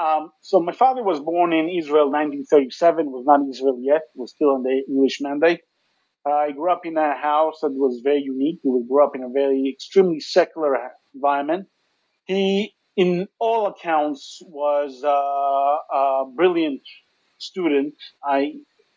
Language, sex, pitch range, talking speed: English, male, 140-190 Hz, 165 wpm